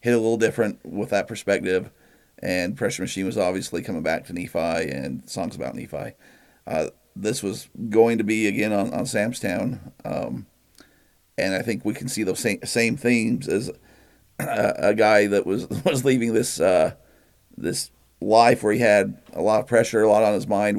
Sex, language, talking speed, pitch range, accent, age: male, English, 185 wpm, 100-115 Hz, American, 50-69